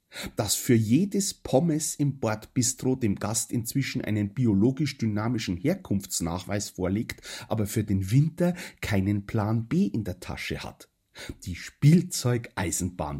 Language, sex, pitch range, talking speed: German, male, 100-150 Hz, 120 wpm